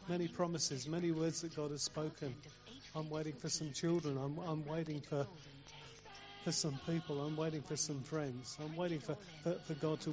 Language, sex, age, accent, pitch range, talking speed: English, male, 40-59, British, 130-160 Hz, 190 wpm